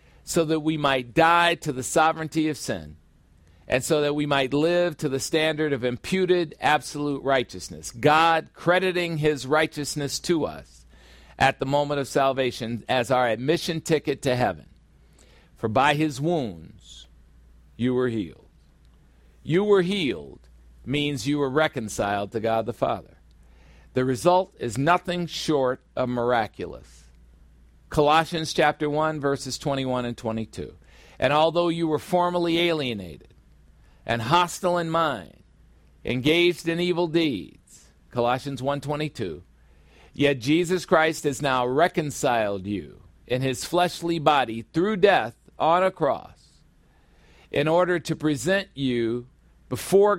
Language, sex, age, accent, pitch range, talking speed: English, male, 50-69, American, 105-160 Hz, 130 wpm